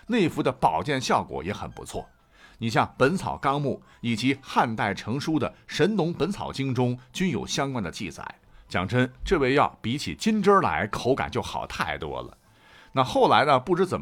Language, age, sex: Chinese, 50-69, male